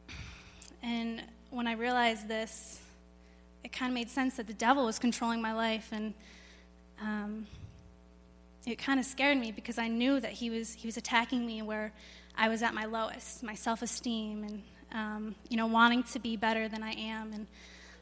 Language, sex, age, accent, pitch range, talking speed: English, female, 10-29, American, 210-240 Hz, 180 wpm